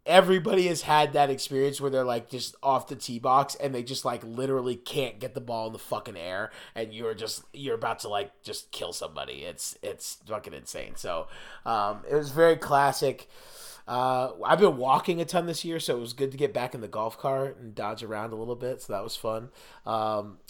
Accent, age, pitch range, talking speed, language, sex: American, 30-49, 110-150 Hz, 220 wpm, English, male